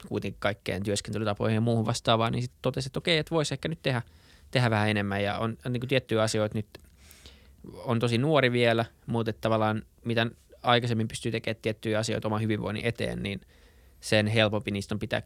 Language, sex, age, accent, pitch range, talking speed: Finnish, male, 20-39, native, 100-115 Hz, 185 wpm